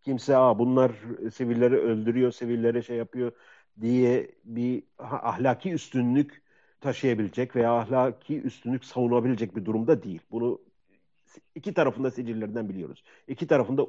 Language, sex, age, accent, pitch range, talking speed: Turkish, male, 50-69, native, 100-130 Hz, 115 wpm